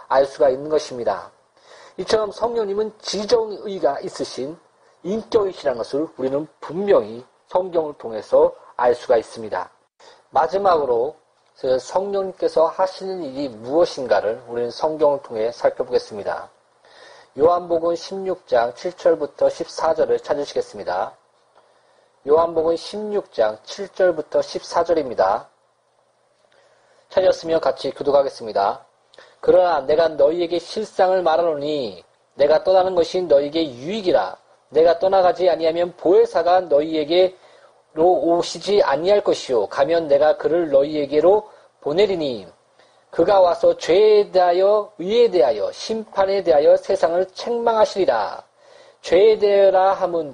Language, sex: Korean, male